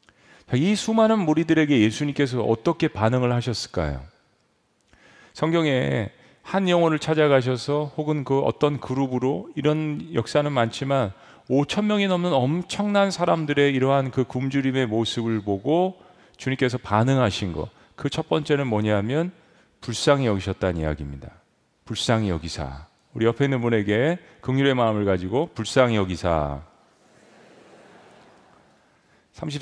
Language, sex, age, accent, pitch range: Korean, male, 40-59, native, 115-160 Hz